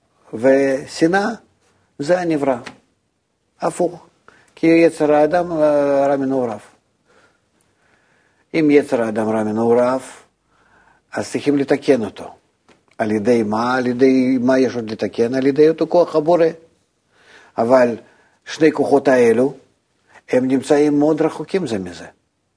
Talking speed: 110 wpm